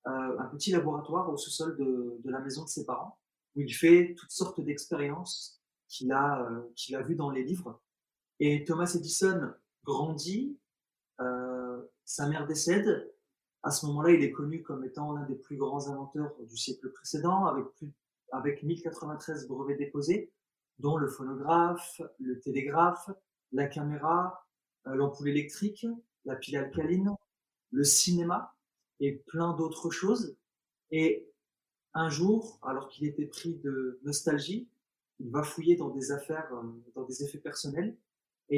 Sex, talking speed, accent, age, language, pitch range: male, 150 wpm, French, 30-49, French, 140-175 Hz